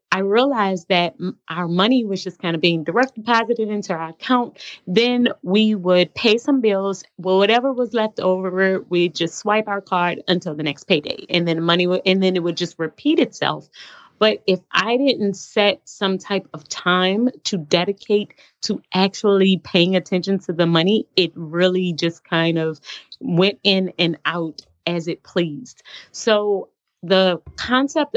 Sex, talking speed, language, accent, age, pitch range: female, 170 wpm, English, American, 20-39, 175-215 Hz